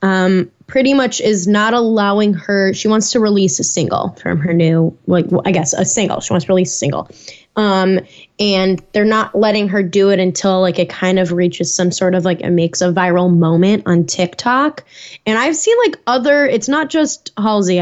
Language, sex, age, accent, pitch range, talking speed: English, female, 10-29, American, 185-235 Hz, 205 wpm